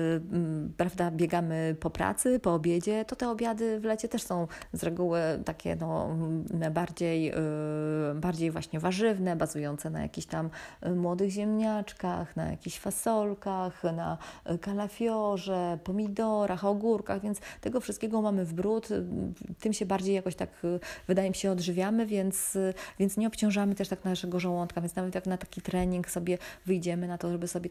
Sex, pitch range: female, 165-195 Hz